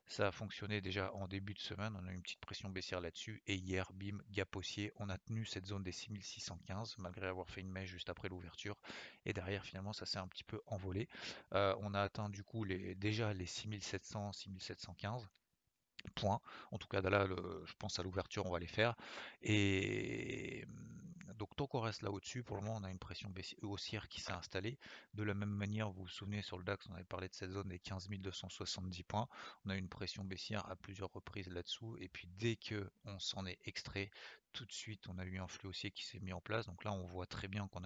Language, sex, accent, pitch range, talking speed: French, male, French, 95-105 Hz, 235 wpm